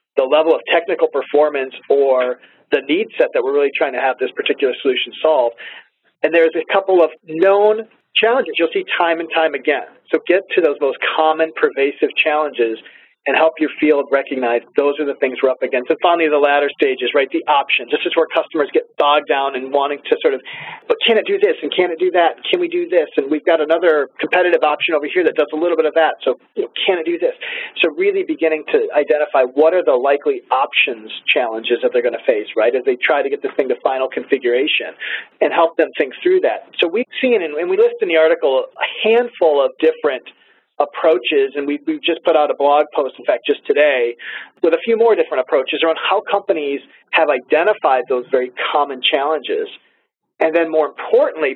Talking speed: 215 wpm